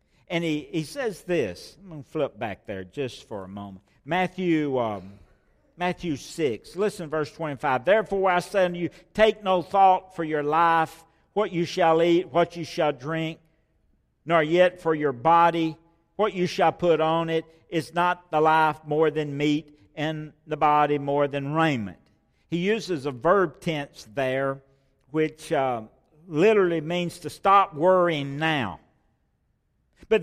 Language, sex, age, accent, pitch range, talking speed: English, male, 60-79, American, 155-200 Hz, 160 wpm